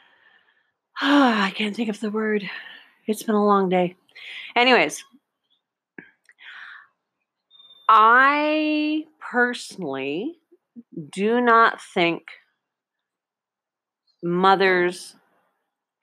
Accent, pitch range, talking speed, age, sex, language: American, 165-240 Hz, 65 wpm, 40-59, female, English